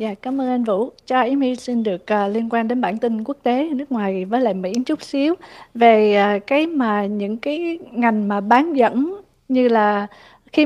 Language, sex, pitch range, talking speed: Vietnamese, female, 225-285 Hz, 215 wpm